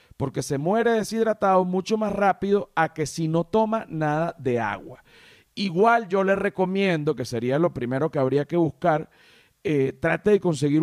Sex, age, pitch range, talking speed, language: male, 50-69, 135-190 Hz, 170 wpm, Spanish